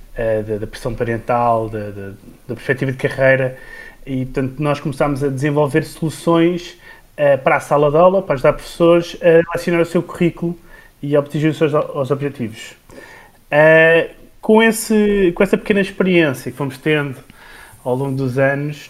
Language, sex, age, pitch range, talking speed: Portuguese, male, 20-39, 130-155 Hz, 170 wpm